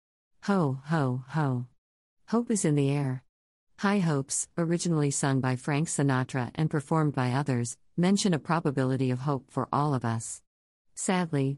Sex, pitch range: female, 130-170 Hz